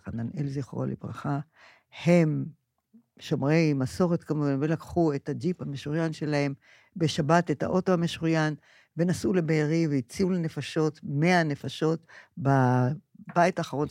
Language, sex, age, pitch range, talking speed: Hebrew, female, 60-79, 135-175 Hz, 105 wpm